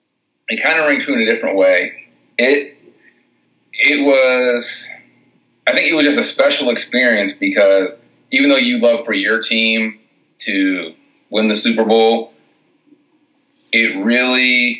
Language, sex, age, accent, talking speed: English, male, 30-49, American, 140 wpm